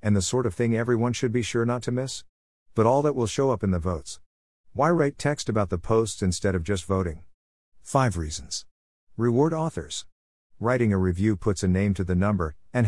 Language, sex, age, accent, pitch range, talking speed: English, male, 50-69, American, 85-115 Hz, 210 wpm